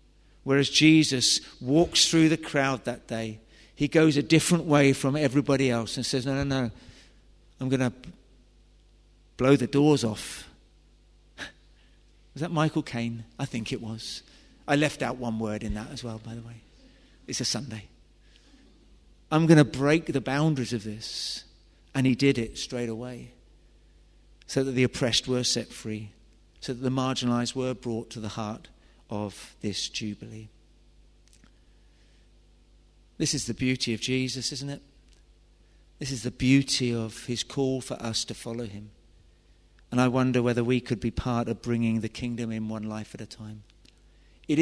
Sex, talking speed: male, 165 wpm